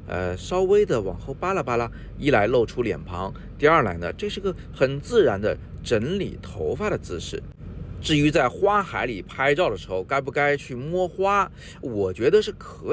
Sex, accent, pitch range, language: male, native, 95-155 Hz, Chinese